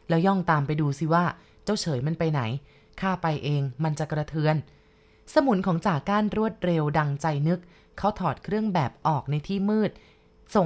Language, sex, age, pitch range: Thai, female, 20-39, 150-195 Hz